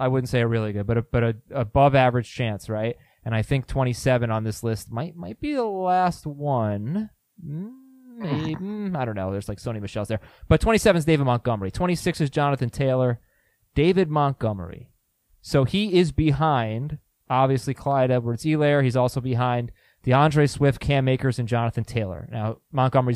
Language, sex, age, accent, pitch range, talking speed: English, male, 20-39, American, 120-150 Hz, 180 wpm